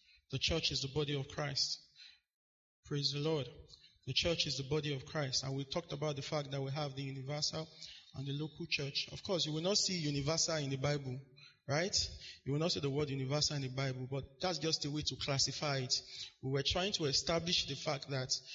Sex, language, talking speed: male, English, 225 wpm